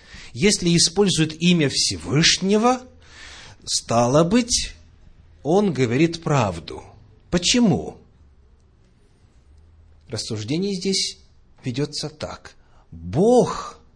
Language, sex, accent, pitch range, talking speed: Russian, male, native, 100-165 Hz, 65 wpm